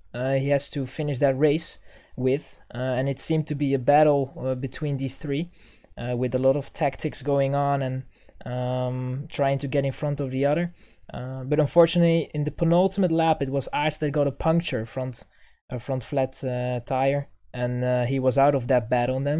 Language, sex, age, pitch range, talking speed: English, male, 20-39, 135-170 Hz, 210 wpm